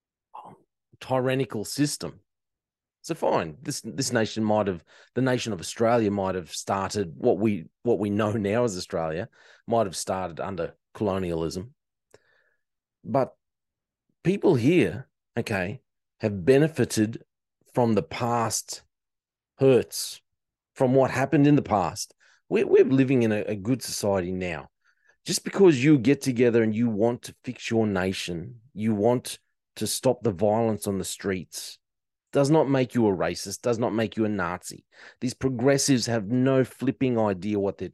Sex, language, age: male, English, 30-49